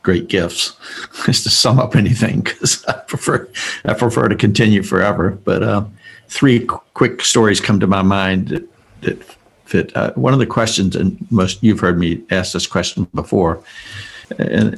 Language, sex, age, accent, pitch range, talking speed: English, male, 60-79, American, 100-120 Hz, 170 wpm